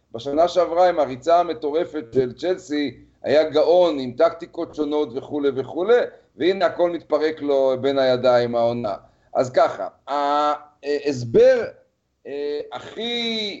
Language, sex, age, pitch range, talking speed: Hebrew, male, 40-59, 140-180 Hz, 105 wpm